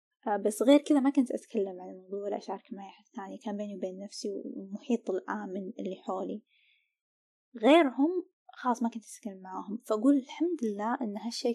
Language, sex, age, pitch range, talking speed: Arabic, female, 10-29, 200-250 Hz, 160 wpm